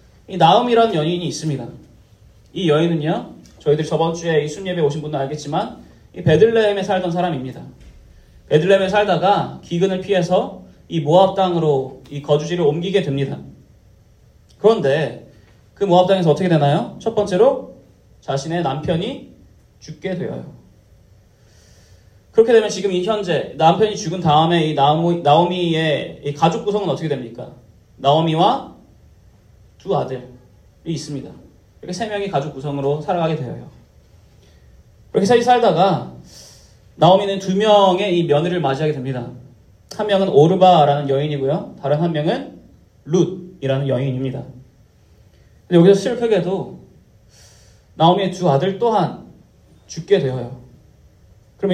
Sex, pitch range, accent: male, 120-180 Hz, native